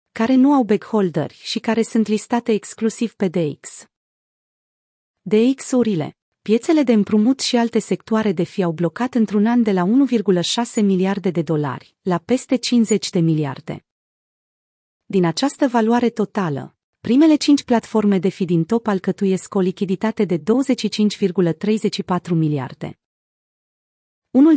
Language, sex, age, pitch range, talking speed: Romanian, female, 30-49, 175-230 Hz, 130 wpm